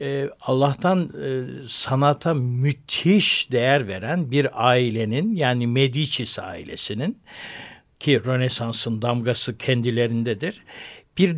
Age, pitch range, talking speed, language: 60-79, 120-175 Hz, 80 wpm, Turkish